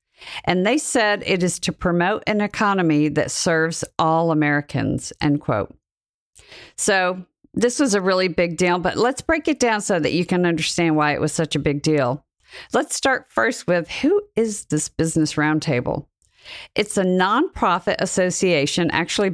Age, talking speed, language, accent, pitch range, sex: 50-69, 165 wpm, English, American, 160-215 Hz, female